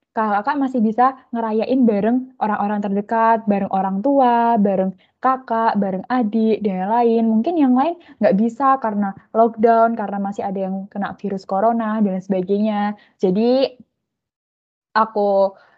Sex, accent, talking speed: female, native, 130 wpm